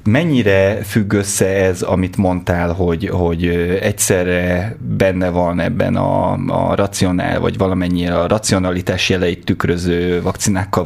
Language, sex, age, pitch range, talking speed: Hungarian, male, 30-49, 85-105 Hz, 120 wpm